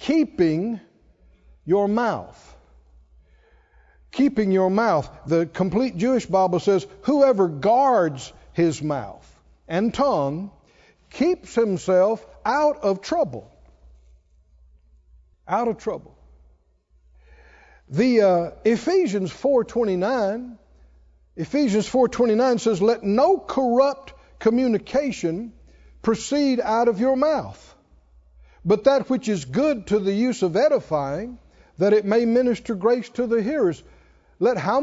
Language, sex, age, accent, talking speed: English, male, 60-79, American, 105 wpm